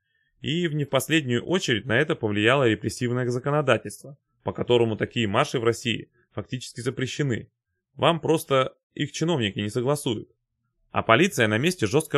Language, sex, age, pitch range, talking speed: Russian, male, 20-39, 115-155 Hz, 145 wpm